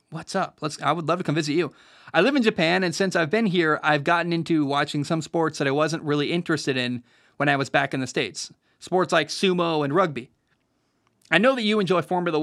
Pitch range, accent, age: 140-180 Hz, American, 30-49